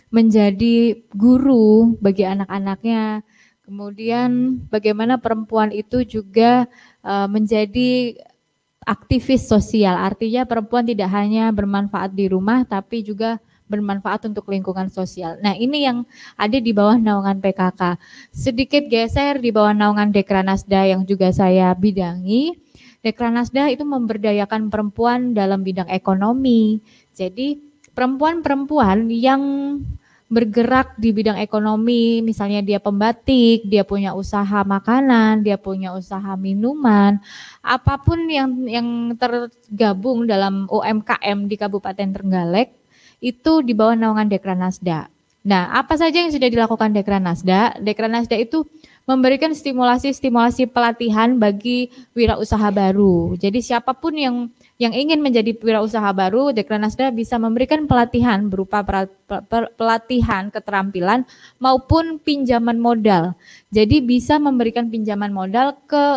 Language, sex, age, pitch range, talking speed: Indonesian, female, 20-39, 200-245 Hz, 120 wpm